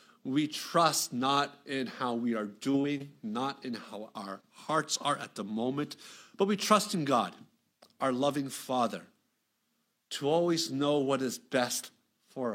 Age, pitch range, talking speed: 50-69, 130-175 Hz, 155 wpm